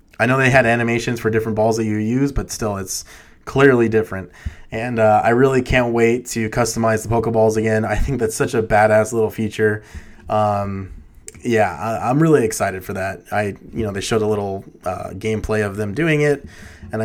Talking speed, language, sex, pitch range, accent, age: 200 wpm, English, male, 105-120 Hz, American, 20-39